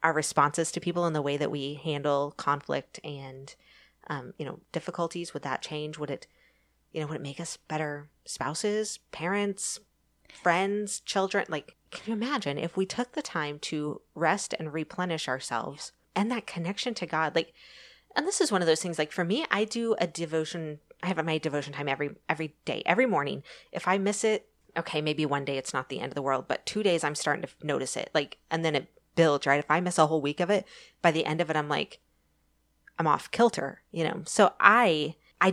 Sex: female